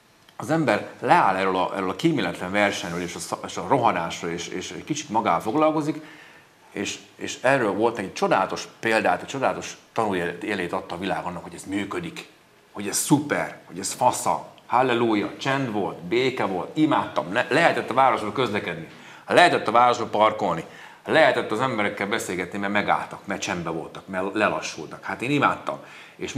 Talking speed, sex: 155 wpm, male